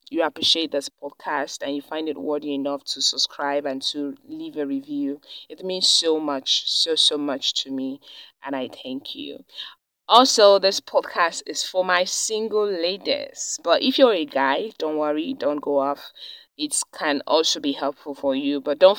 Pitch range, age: 140-175 Hz, 20-39